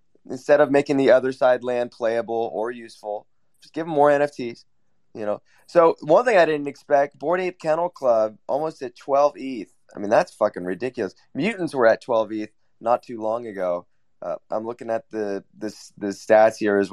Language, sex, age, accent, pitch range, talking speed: English, male, 20-39, American, 110-155 Hz, 200 wpm